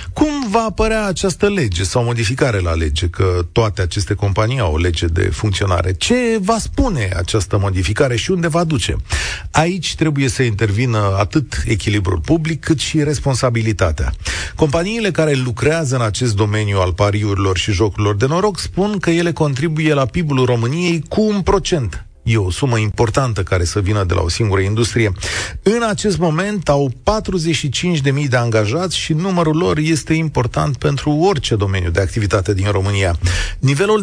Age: 40-59